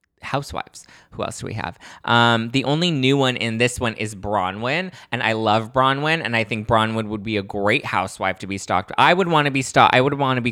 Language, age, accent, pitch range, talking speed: English, 20-39, American, 95-120 Hz, 245 wpm